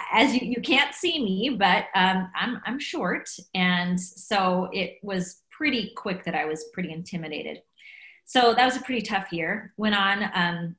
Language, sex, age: English, female, 30-49